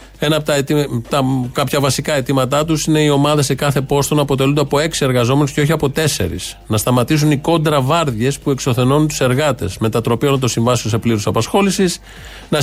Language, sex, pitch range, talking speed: Greek, male, 120-150 Hz, 195 wpm